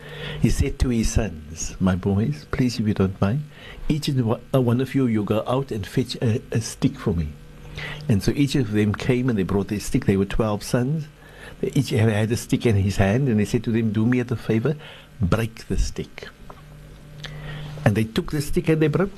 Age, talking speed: 60-79, 215 wpm